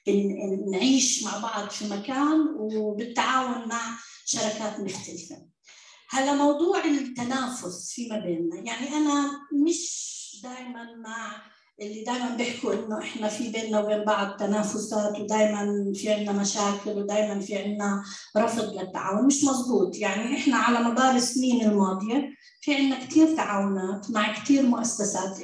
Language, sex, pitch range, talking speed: English, female, 205-250 Hz, 125 wpm